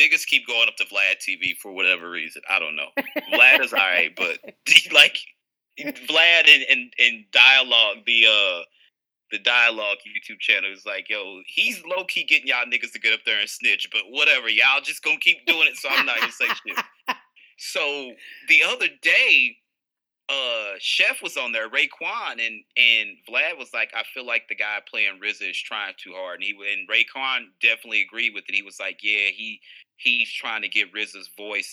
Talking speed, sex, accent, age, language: 190 wpm, male, American, 30-49, English